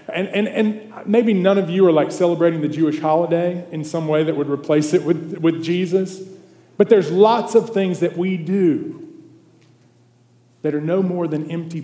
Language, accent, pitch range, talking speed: English, American, 140-180 Hz, 190 wpm